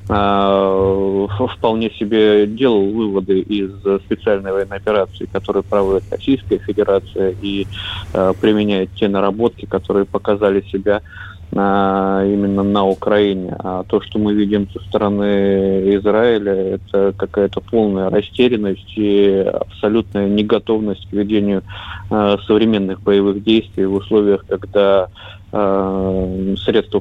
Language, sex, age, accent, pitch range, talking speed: Russian, male, 20-39, native, 95-105 Hz, 100 wpm